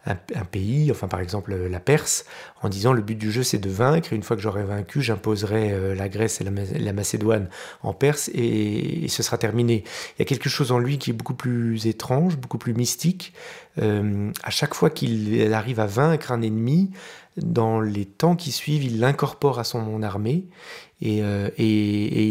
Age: 40-59